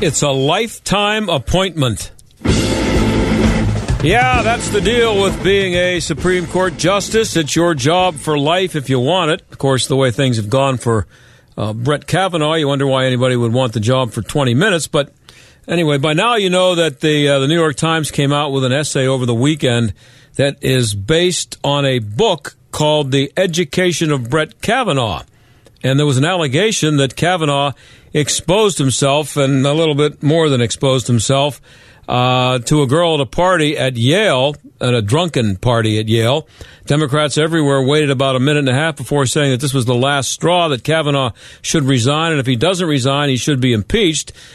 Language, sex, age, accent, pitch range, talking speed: English, male, 50-69, American, 130-160 Hz, 190 wpm